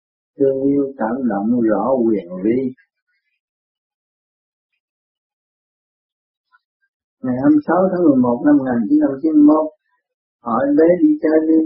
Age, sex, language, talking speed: 50-69, male, Vietnamese, 125 wpm